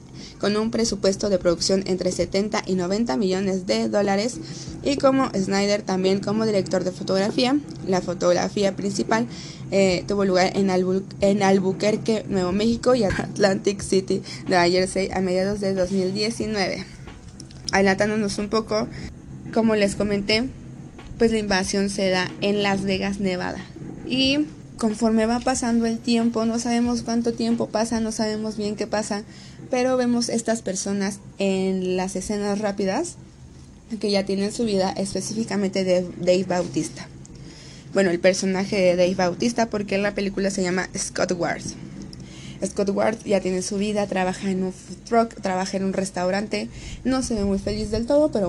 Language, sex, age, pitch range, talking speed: Spanish, female, 20-39, 185-220 Hz, 155 wpm